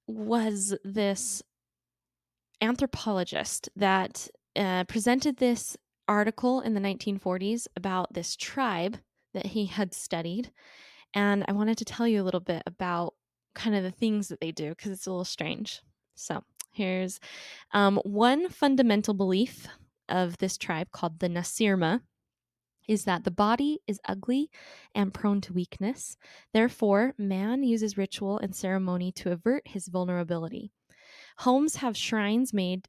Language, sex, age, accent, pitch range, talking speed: English, female, 10-29, American, 185-240 Hz, 140 wpm